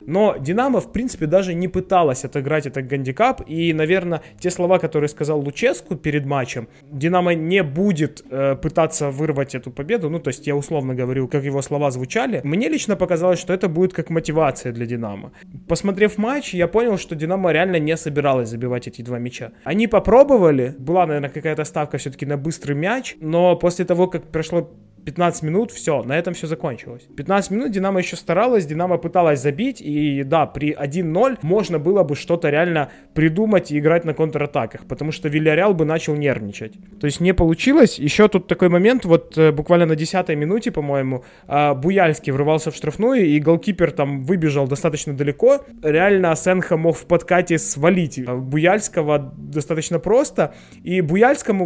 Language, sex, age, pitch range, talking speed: Ukrainian, male, 20-39, 145-185 Hz, 170 wpm